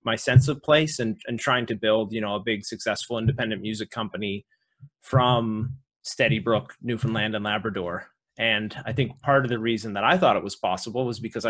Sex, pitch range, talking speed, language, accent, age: male, 105-125 Hz, 200 wpm, English, American, 30-49